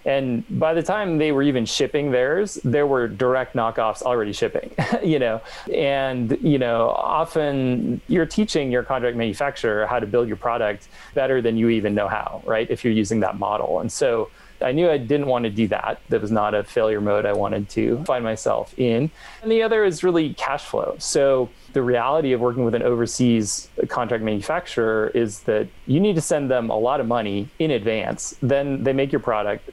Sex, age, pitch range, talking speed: male, 30-49, 110-135 Hz, 200 wpm